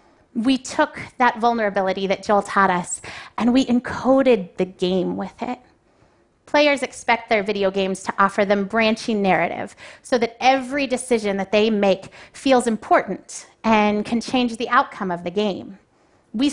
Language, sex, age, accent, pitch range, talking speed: English, female, 30-49, American, 205-260 Hz, 155 wpm